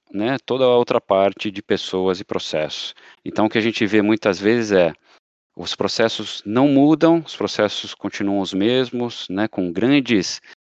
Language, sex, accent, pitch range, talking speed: Portuguese, male, Brazilian, 100-120 Hz, 170 wpm